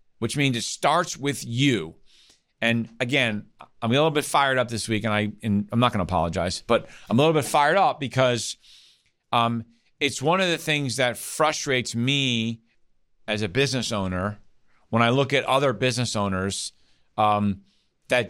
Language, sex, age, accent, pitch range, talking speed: English, male, 40-59, American, 105-130 Hz, 180 wpm